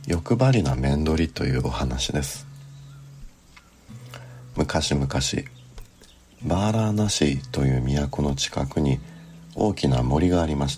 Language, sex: Japanese, male